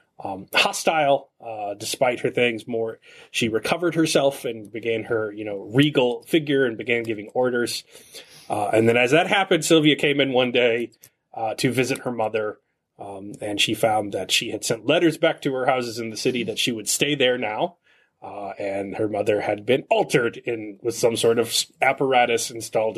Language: English